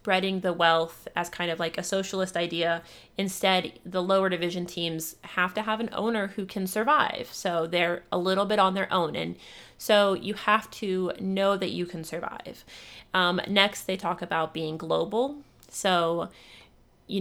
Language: English